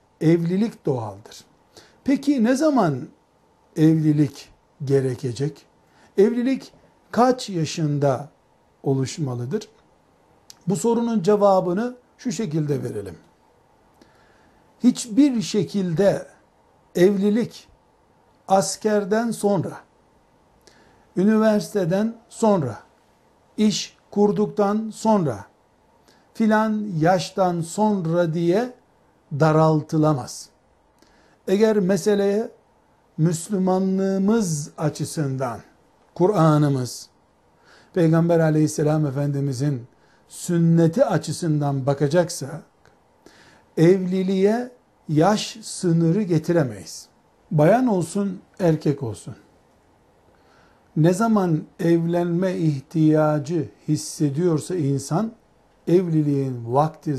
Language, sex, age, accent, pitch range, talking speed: Turkish, male, 60-79, native, 150-205 Hz, 60 wpm